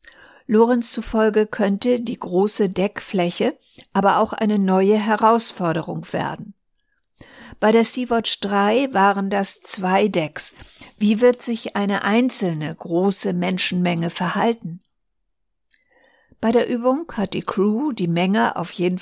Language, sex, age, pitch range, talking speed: German, female, 60-79, 190-235 Hz, 120 wpm